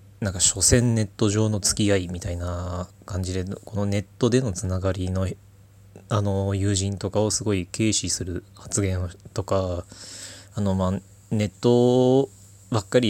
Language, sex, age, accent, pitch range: Japanese, male, 20-39, native, 95-115 Hz